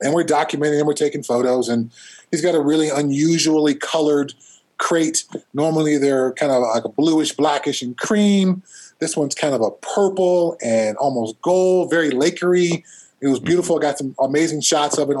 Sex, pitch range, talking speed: male, 140-185 Hz, 180 wpm